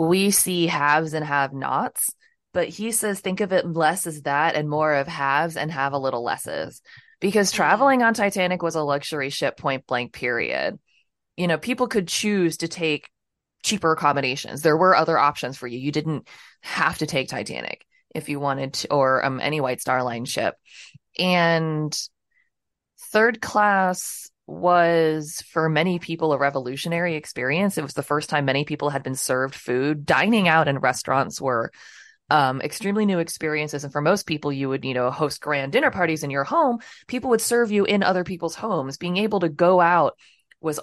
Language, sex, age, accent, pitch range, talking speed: English, female, 20-39, American, 140-185 Hz, 185 wpm